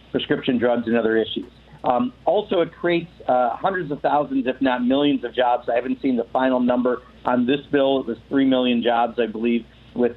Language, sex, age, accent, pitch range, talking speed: English, male, 50-69, American, 120-155 Hz, 205 wpm